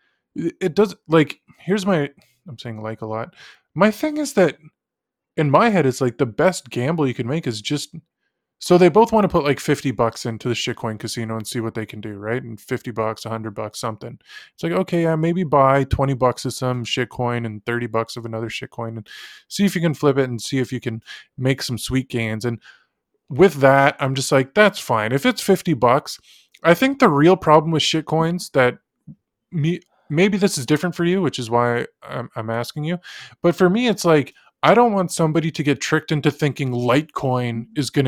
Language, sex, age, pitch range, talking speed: English, male, 20-39, 120-160 Hz, 215 wpm